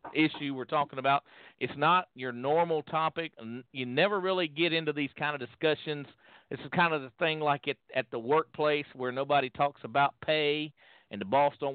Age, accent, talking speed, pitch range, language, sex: 50-69, American, 195 wpm, 125-160 Hz, English, male